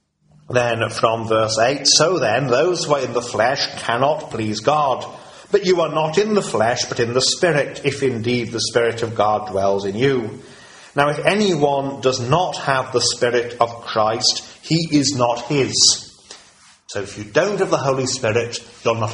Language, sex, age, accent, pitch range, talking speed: English, male, 40-59, British, 110-145 Hz, 185 wpm